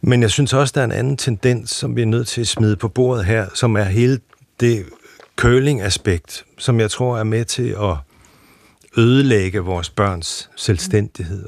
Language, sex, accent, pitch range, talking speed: Danish, male, native, 100-125 Hz, 190 wpm